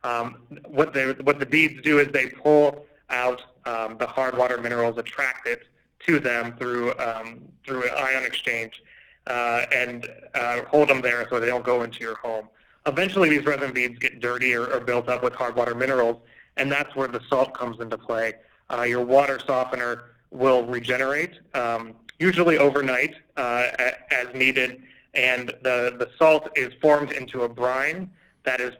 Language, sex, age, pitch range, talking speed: English, male, 30-49, 120-135 Hz, 175 wpm